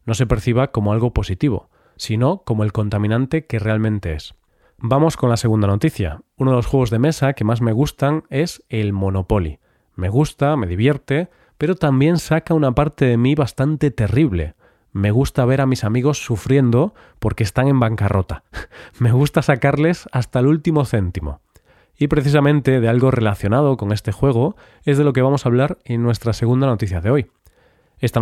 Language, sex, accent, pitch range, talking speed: Spanish, male, Spanish, 110-140 Hz, 180 wpm